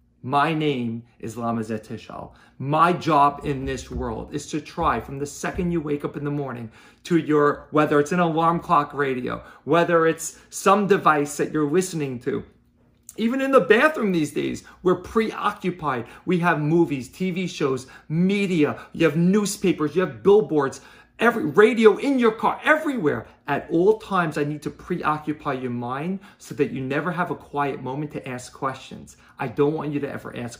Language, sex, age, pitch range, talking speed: English, male, 40-59, 130-170 Hz, 180 wpm